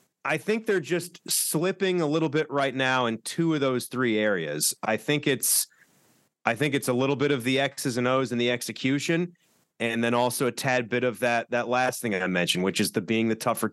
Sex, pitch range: male, 120-145 Hz